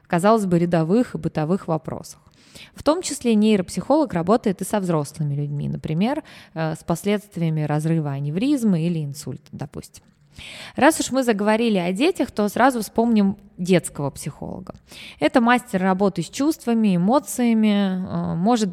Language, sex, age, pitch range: Russian, female, 20-39, 160-215 Hz